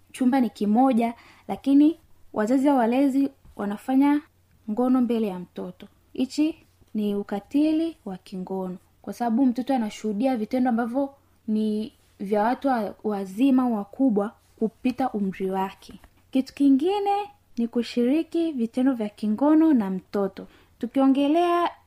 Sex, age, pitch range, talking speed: female, 20-39, 215-275 Hz, 115 wpm